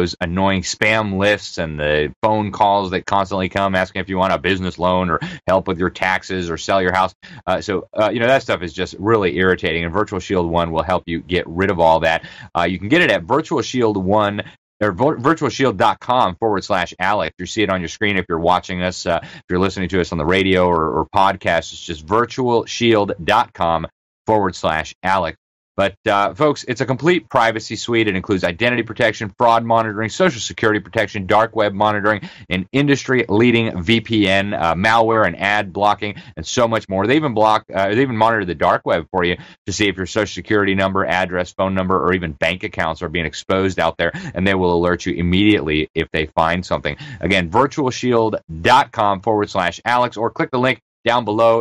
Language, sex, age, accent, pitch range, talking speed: English, male, 30-49, American, 90-110 Hz, 205 wpm